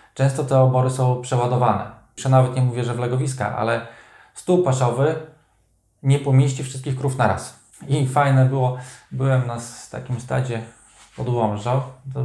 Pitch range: 115-140 Hz